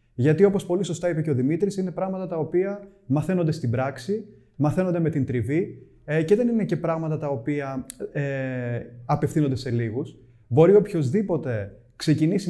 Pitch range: 125-170 Hz